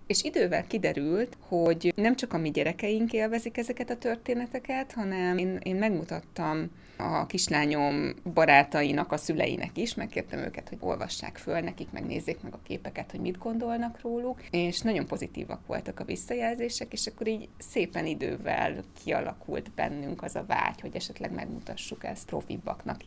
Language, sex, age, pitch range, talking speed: Hungarian, female, 20-39, 160-215 Hz, 150 wpm